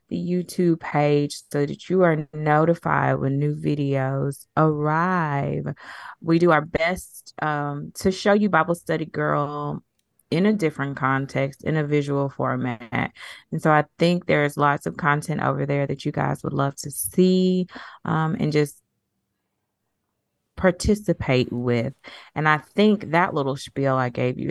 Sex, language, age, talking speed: female, English, 20-39, 150 wpm